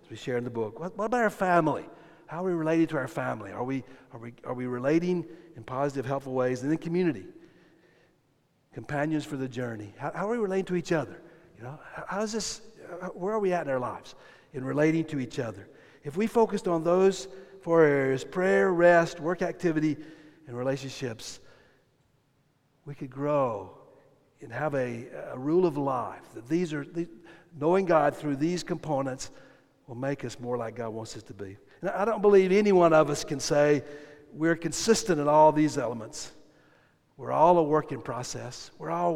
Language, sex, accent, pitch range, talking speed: English, male, American, 135-175 Hz, 195 wpm